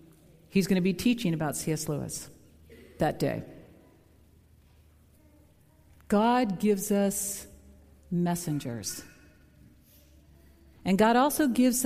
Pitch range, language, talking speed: 150-215 Hz, English, 90 wpm